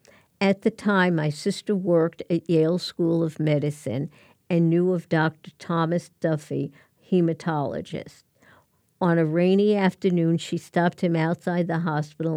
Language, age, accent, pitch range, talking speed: English, 50-69, American, 160-185 Hz, 135 wpm